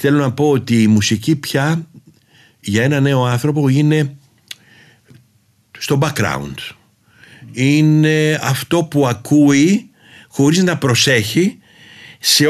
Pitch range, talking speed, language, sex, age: 110-150 Hz, 105 wpm, Greek, male, 50-69